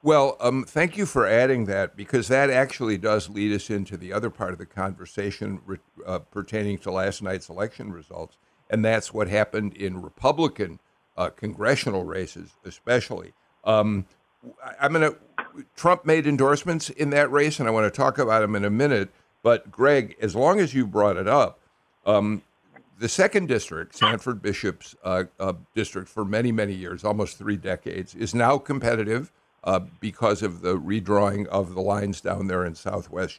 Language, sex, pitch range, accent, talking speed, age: English, male, 100-130 Hz, American, 175 wpm, 60-79